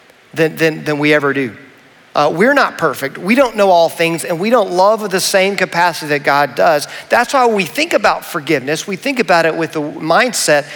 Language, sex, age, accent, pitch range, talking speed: English, male, 40-59, American, 140-180 Hz, 210 wpm